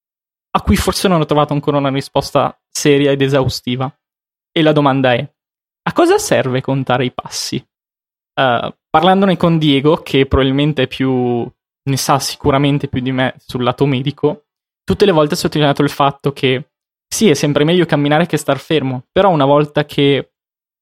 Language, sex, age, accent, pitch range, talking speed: Italian, male, 20-39, native, 135-155 Hz, 165 wpm